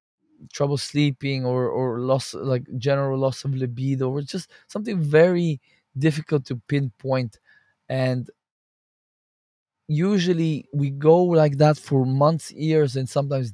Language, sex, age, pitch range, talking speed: English, male, 20-39, 125-150 Hz, 125 wpm